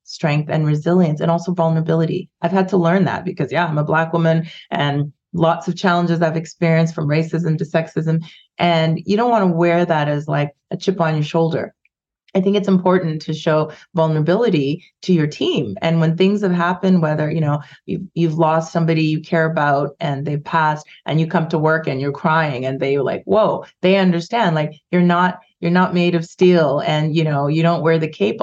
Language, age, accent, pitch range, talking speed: English, 30-49, American, 155-180 Hz, 210 wpm